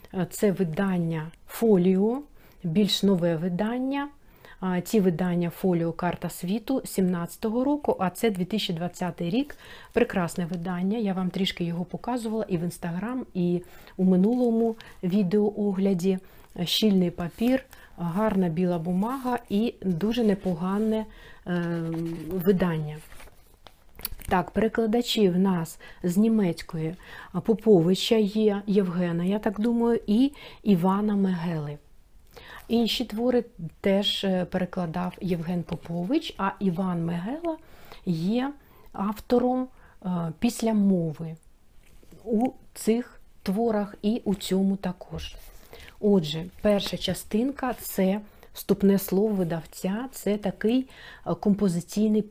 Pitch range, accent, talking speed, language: 175-220 Hz, native, 100 wpm, Ukrainian